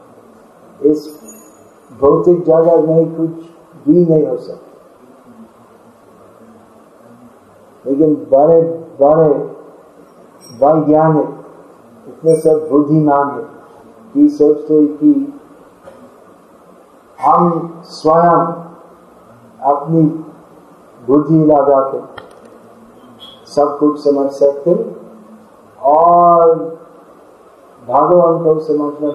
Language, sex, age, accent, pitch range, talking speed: Hindi, male, 50-69, native, 140-165 Hz, 65 wpm